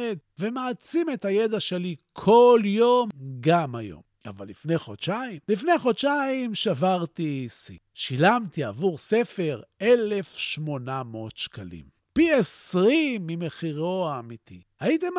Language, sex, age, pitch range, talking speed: Hebrew, male, 50-69, 145-220 Hz, 100 wpm